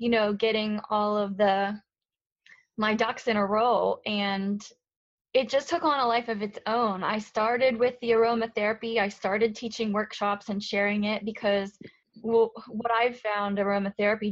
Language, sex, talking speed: English, female, 165 wpm